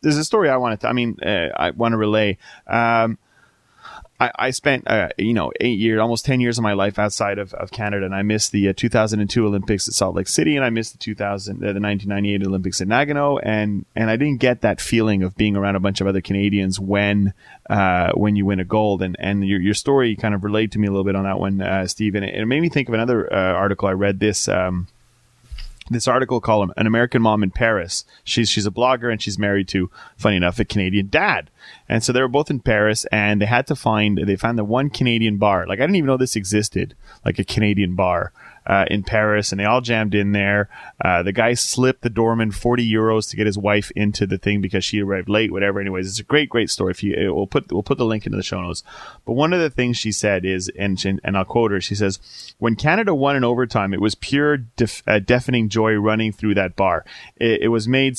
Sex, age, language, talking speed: male, 20-39, English, 245 wpm